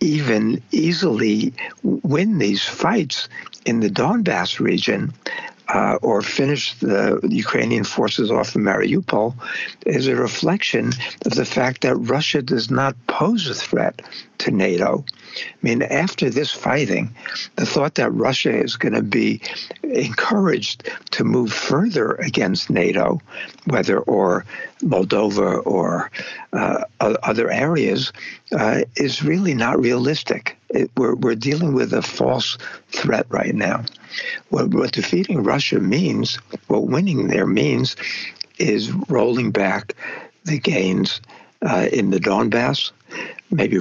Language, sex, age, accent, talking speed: English, male, 60-79, American, 125 wpm